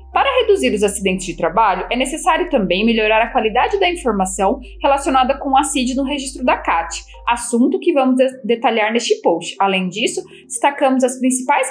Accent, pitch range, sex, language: Brazilian, 200-290 Hz, female, Portuguese